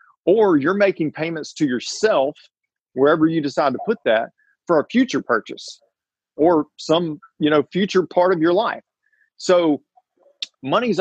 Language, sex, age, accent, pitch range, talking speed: English, male, 40-59, American, 125-165 Hz, 145 wpm